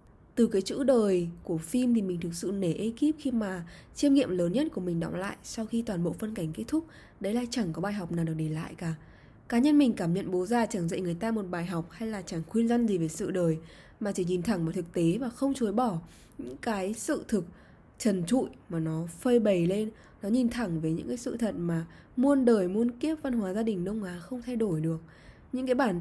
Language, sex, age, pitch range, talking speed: Vietnamese, female, 20-39, 180-245 Hz, 260 wpm